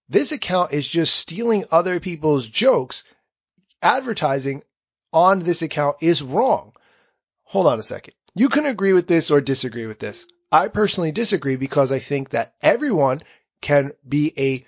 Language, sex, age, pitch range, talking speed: English, male, 30-49, 140-205 Hz, 155 wpm